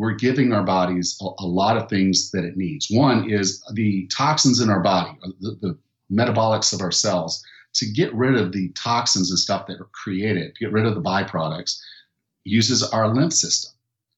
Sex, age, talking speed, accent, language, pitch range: male, 50-69, 195 wpm, American, English, 95-120 Hz